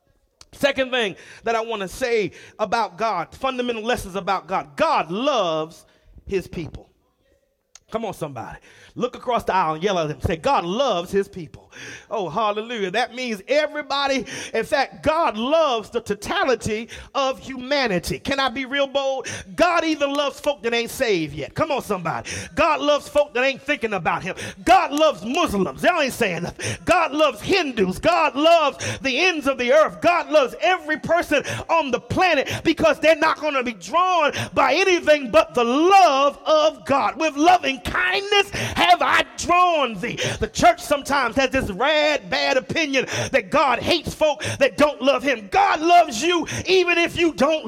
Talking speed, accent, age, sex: 175 wpm, American, 40-59, male